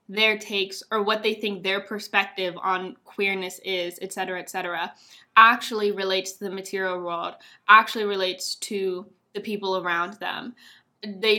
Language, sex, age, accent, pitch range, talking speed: English, female, 10-29, American, 190-225 Hz, 155 wpm